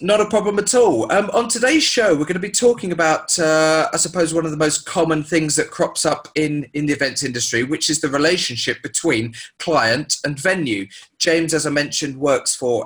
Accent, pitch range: British, 130-165 Hz